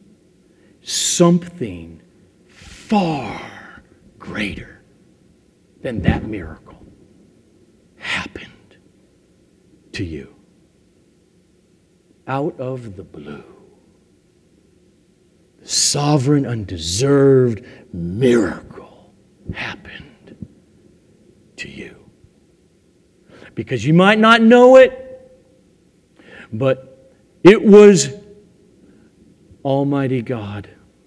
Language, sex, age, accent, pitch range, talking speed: English, male, 50-69, American, 135-205 Hz, 60 wpm